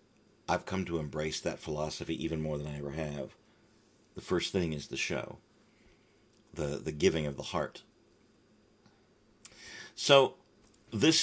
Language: English